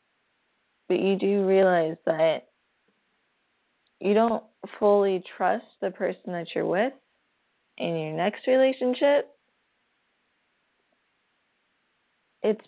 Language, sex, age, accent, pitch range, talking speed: English, female, 20-39, American, 180-210 Hz, 90 wpm